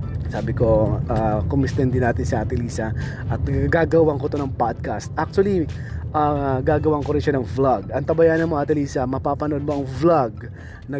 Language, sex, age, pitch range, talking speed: Filipino, male, 20-39, 125-155 Hz, 170 wpm